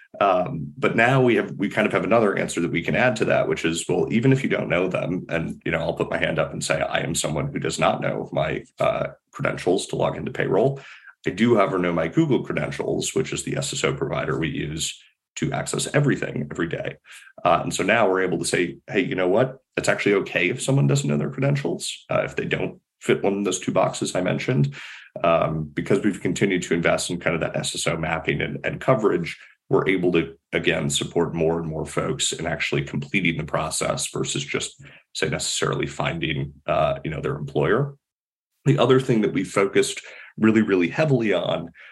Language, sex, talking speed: English, male, 220 wpm